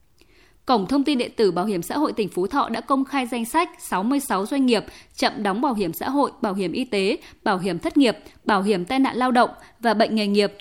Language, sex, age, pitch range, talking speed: Vietnamese, female, 20-39, 205-275 Hz, 250 wpm